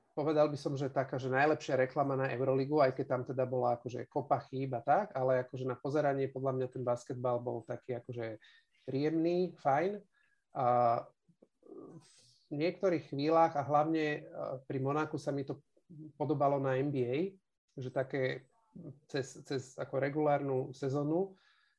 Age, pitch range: 40-59, 130-155 Hz